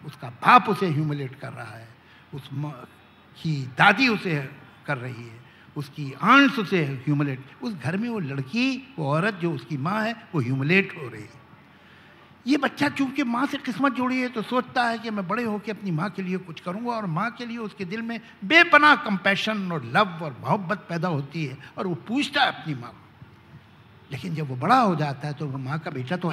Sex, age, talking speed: male, 60-79, 205 wpm